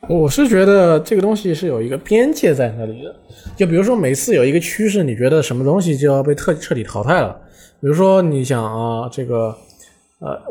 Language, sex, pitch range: Chinese, male, 125-185 Hz